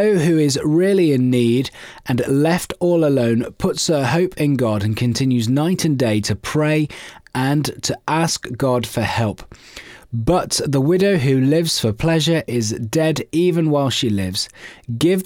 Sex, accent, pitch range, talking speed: male, British, 115-160 Hz, 160 wpm